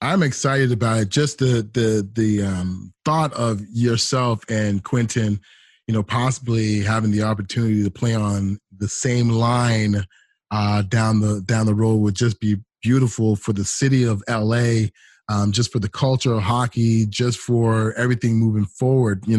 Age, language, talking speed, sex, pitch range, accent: 30-49, English, 165 wpm, male, 110-130 Hz, American